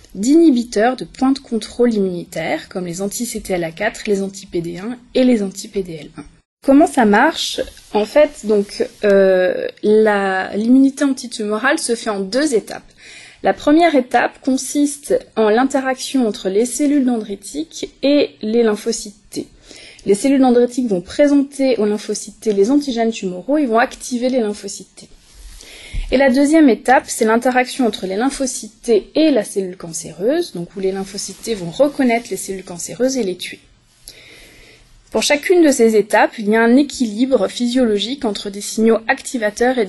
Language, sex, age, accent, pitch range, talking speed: French, female, 20-39, French, 200-265 Hz, 155 wpm